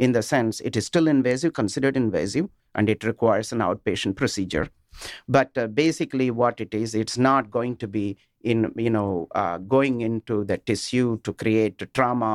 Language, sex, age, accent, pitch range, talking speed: English, male, 50-69, Indian, 105-130 Hz, 180 wpm